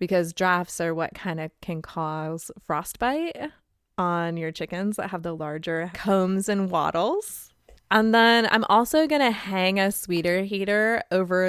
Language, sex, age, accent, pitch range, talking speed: English, female, 20-39, American, 170-210 Hz, 150 wpm